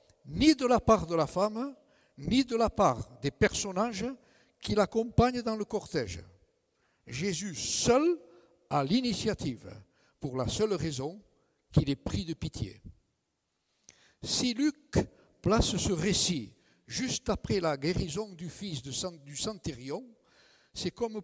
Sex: male